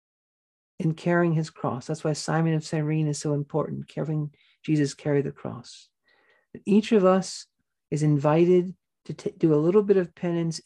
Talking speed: 165 wpm